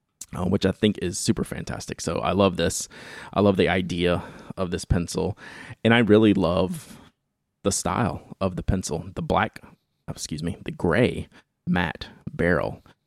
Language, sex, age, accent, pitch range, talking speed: English, male, 20-39, American, 90-105 Hz, 160 wpm